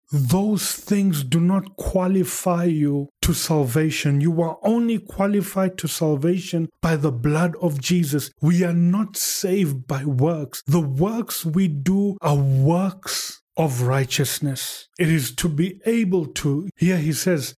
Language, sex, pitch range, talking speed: English, male, 130-165 Hz, 145 wpm